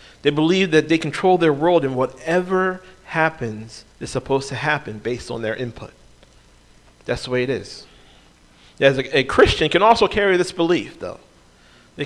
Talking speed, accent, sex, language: 170 wpm, American, male, English